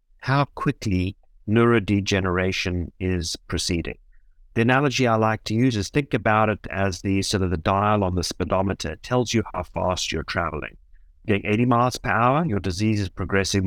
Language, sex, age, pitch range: English, male, 60-79, 90-120 Hz